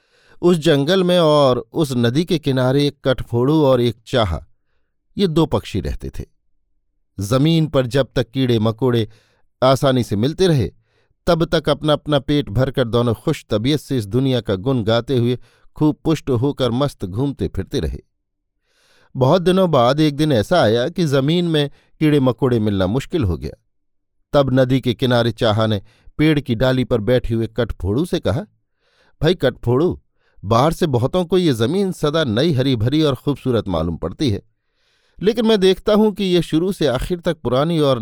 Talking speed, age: 175 wpm, 50-69